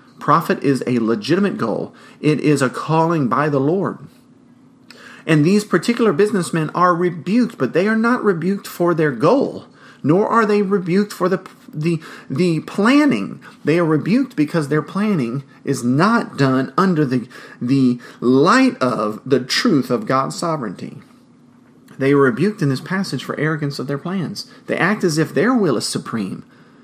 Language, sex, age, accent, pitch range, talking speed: English, male, 40-59, American, 135-185 Hz, 165 wpm